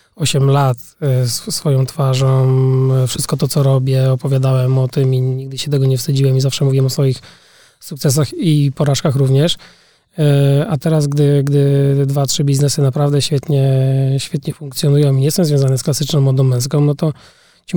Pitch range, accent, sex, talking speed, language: 135-160 Hz, Polish, male, 160 wpm, English